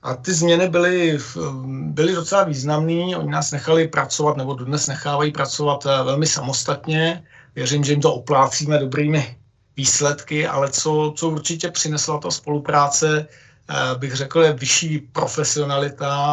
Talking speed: 130 wpm